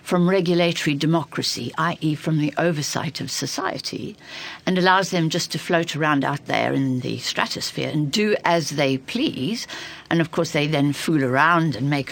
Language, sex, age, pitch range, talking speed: English, female, 60-79, 145-215 Hz, 175 wpm